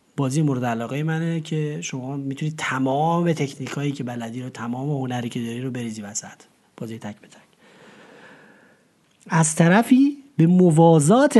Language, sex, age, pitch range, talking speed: Persian, male, 30-49, 130-170 Hz, 145 wpm